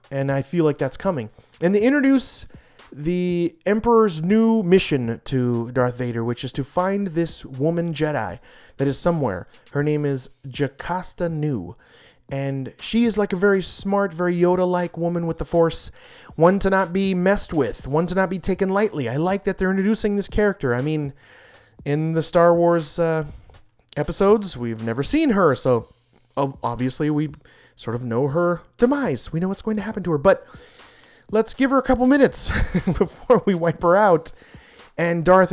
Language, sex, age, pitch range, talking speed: English, male, 30-49, 140-200 Hz, 175 wpm